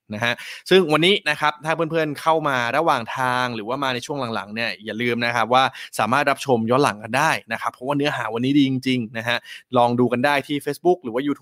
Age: 20-39